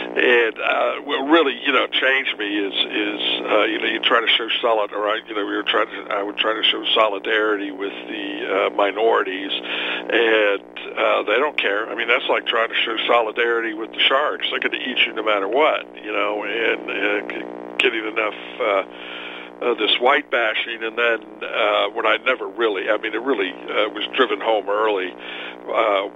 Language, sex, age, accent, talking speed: English, male, 50-69, American, 195 wpm